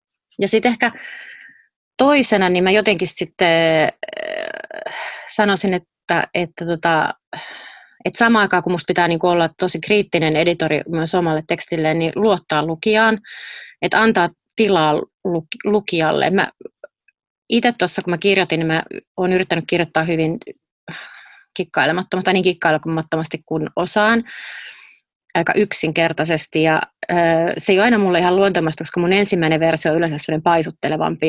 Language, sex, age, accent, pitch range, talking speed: Finnish, female, 30-49, native, 165-205 Hz, 130 wpm